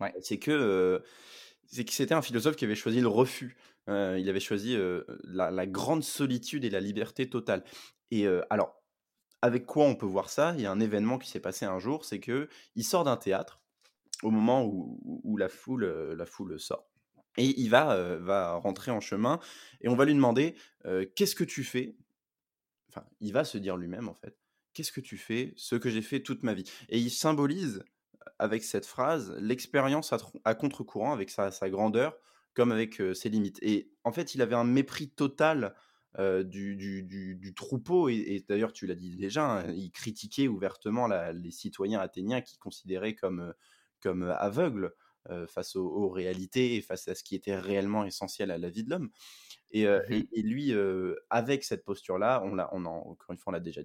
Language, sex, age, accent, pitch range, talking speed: French, male, 20-39, French, 95-130 Hz, 210 wpm